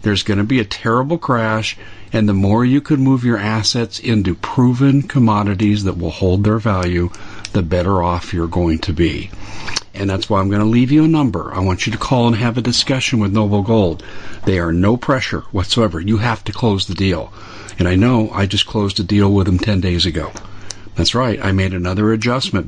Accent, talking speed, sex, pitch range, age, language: American, 215 wpm, male, 95-110 Hz, 50-69, English